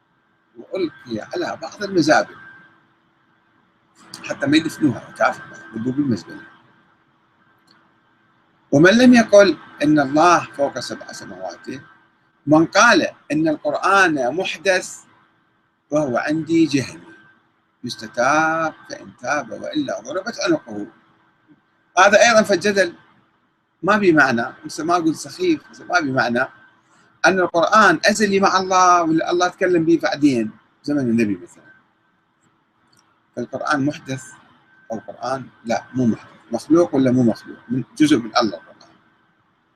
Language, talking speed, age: Arabic, 105 wpm, 40-59